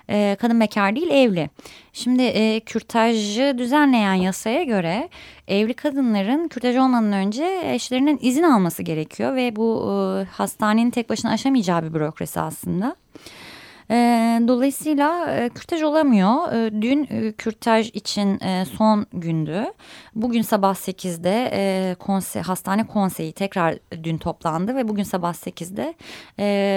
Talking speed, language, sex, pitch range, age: 130 wpm, Turkish, female, 195-250 Hz, 20-39